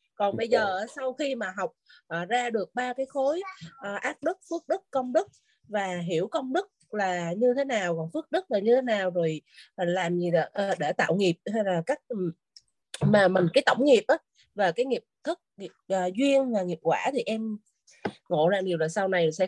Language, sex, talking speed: Vietnamese, female, 205 wpm